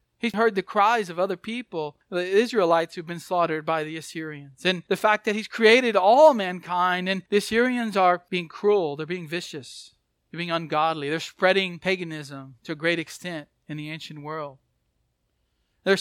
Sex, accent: male, American